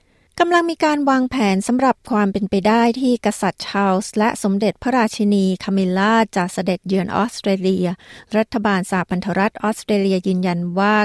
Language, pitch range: Thai, 185-225 Hz